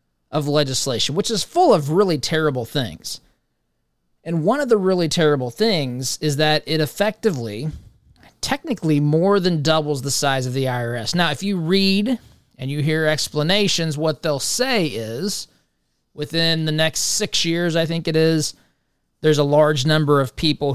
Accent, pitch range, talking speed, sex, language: American, 130-170 Hz, 160 wpm, male, English